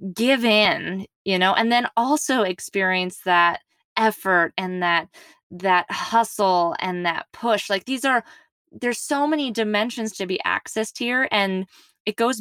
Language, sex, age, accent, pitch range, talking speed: English, female, 20-39, American, 180-225 Hz, 150 wpm